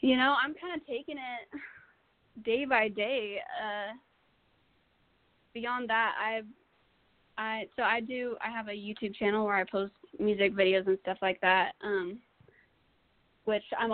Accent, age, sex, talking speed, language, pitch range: American, 20-39, female, 150 wpm, English, 200-245 Hz